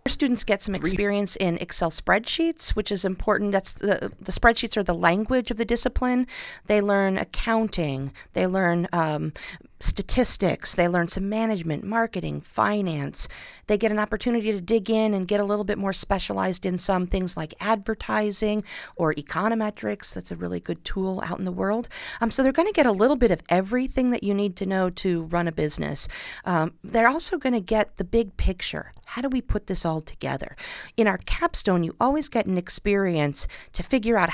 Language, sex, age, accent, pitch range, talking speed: English, female, 40-59, American, 165-215 Hz, 195 wpm